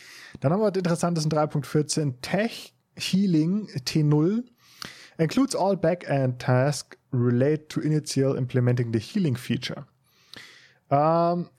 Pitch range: 125-160 Hz